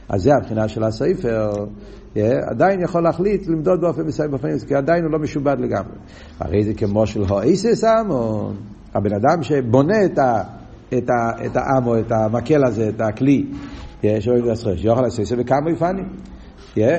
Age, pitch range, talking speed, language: 60-79, 110-165 Hz, 175 wpm, Hebrew